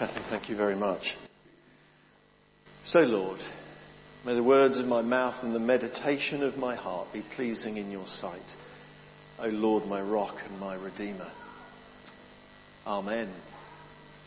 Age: 50-69